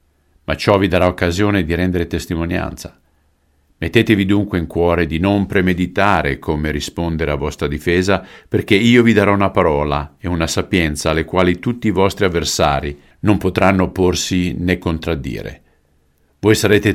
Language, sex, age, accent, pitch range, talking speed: Italian, male, 50-69, native, 75-100 Hz, 150 wpm